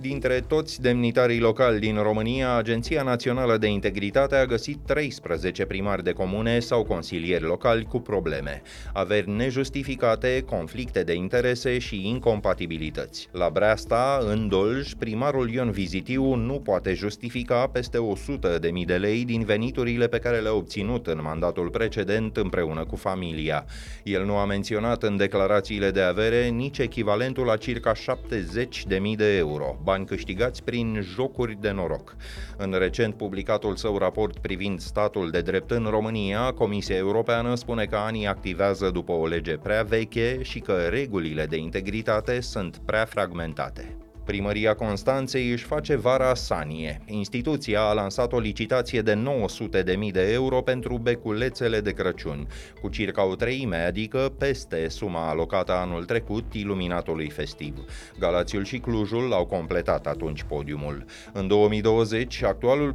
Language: Romanian